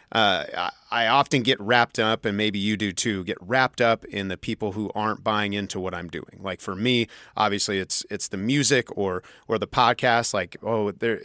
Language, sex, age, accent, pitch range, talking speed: English, male, 30-49, American, 100-125 Hz, 210 wpm